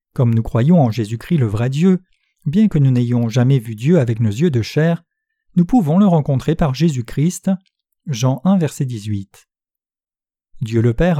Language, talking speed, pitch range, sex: French, 175 wpm, 120-180 Hz, male